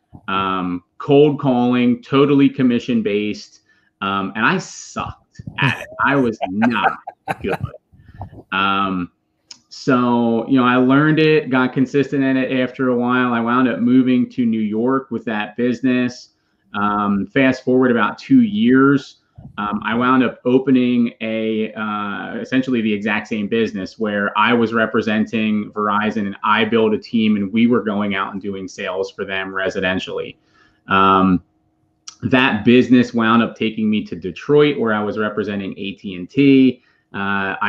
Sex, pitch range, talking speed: male, 105-130 Hz, 150 wpm